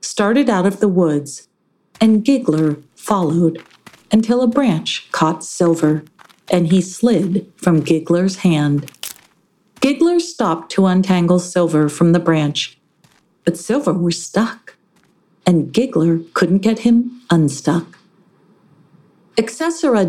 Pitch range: 165-215 Hz